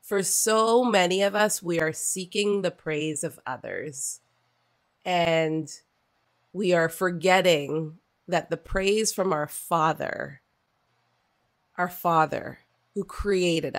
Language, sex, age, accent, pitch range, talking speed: English, female, 30-49, American, 160-210 Hz, 115 wpm